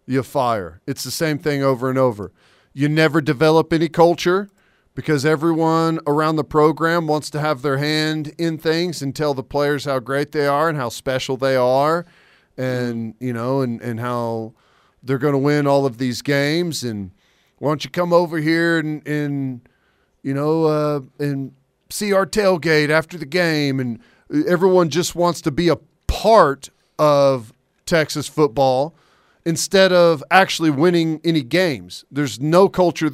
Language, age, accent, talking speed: English, 40-59, American, 165 wpm